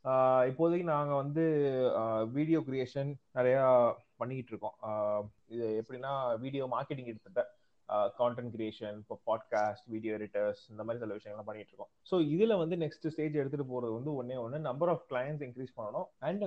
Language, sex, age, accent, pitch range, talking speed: Tamil, male, 20-39, native, 115-155 Hz, 150 wpm